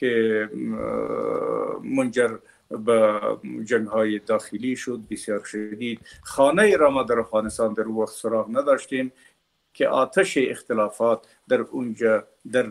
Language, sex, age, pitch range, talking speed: Persian, male, 50-69, 110-135 Hz, 105 wpm